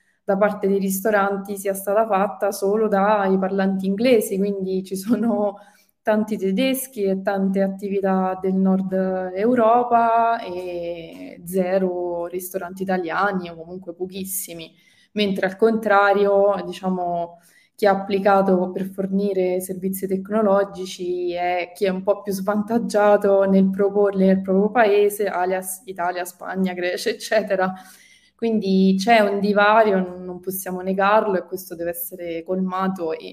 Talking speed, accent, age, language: 125 wpm, native, 20-39, Italian